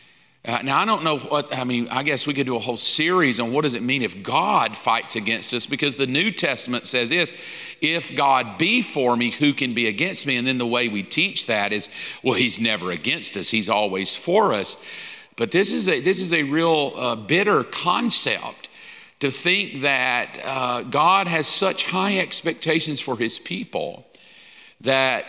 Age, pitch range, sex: 50-69, 125-165 Hz, male